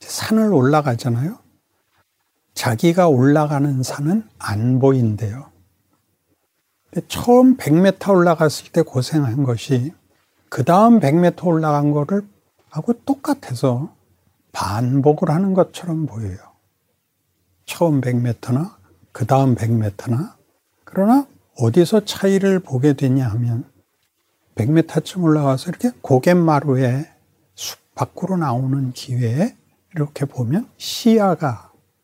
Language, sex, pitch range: Korean, male, 125-175 Hz